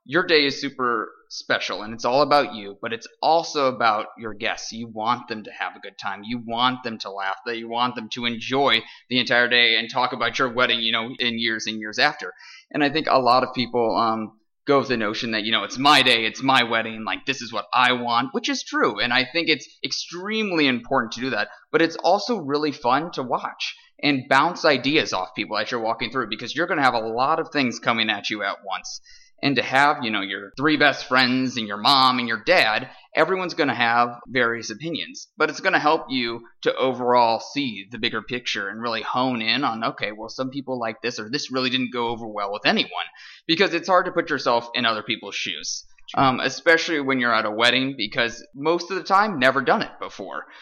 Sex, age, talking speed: male, 20-39, 235 wpm